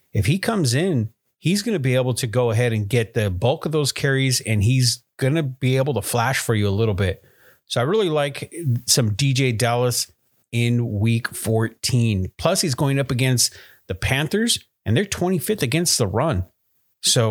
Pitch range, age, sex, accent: 115-165 Hz, 40-59, male, American